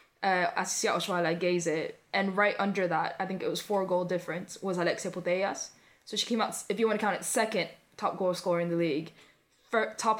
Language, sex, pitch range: English, female, 165-190 Hz